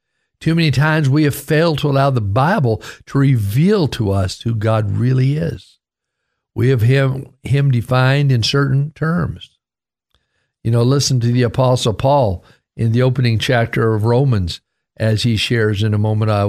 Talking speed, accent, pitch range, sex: 165 wpm, American, 110-140 Hz, male